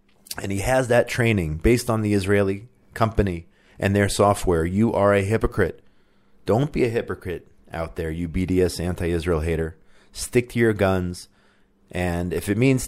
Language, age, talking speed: English, 30-49, 165 wpm